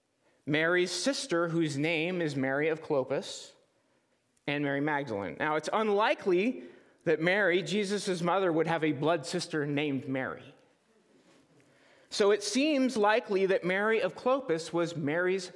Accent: American